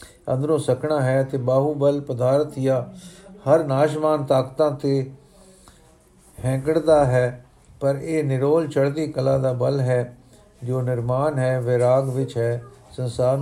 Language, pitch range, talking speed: Punjabi, 130-155 Hz, 125 wpm